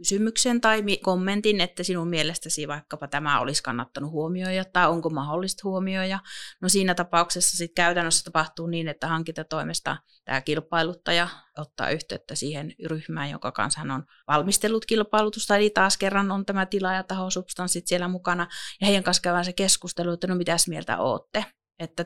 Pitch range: 155-185 Hz